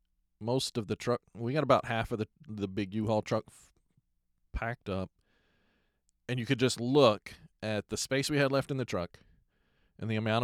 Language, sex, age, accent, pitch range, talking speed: English, male, 40-59, American, 95-120 Hz, 195 wpm